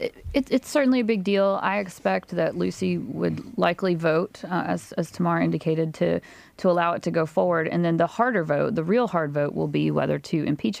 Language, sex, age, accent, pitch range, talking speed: English, female, 30-49, American, 155-185 Hz, 220 wpm